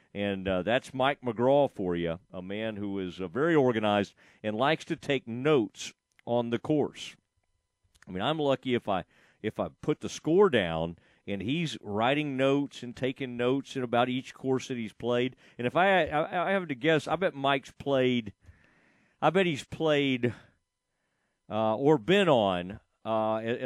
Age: 50-69